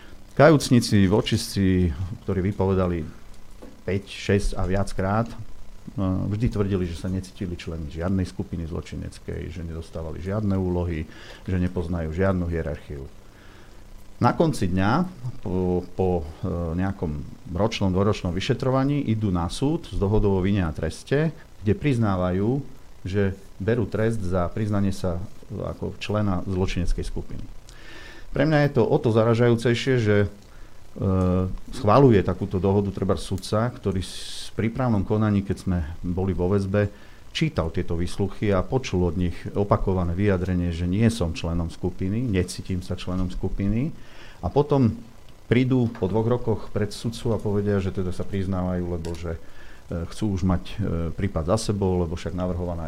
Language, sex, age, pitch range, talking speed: Slovak, male, 50-69, 90-110 Hz, 140 wpm